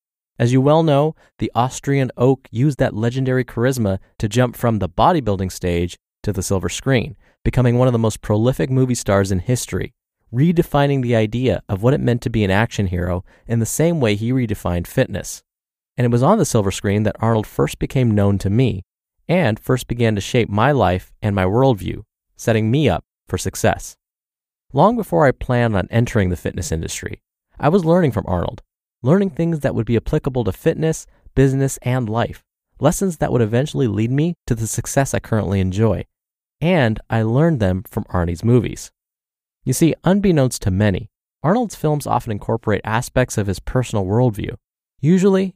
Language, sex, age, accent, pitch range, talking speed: English, male, 30-49, American, 100-135 Hz, 180 wpm